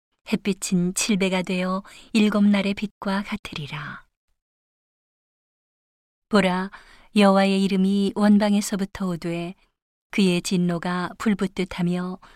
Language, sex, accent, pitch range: Korean, female, native, 180-205 Hz